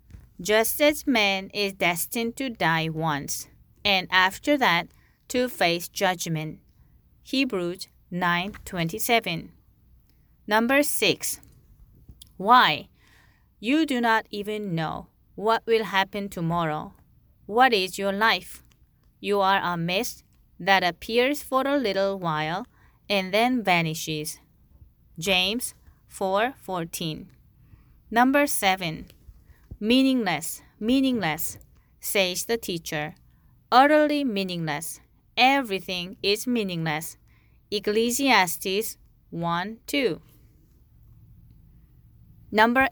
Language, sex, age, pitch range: Korean, female, 30-49, 170-230 Hz